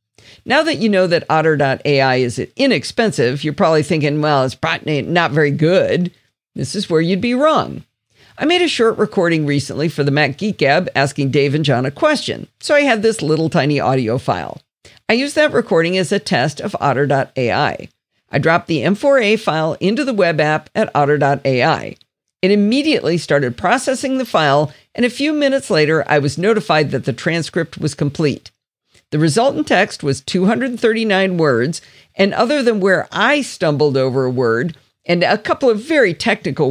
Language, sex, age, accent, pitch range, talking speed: English, female, 50-69, American, 145-215 Hz, 175 wpm